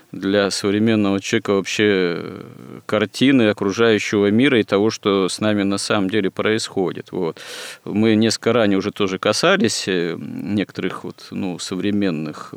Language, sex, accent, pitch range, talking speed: Russian, male, native, 95-110 Hz, 120 wpm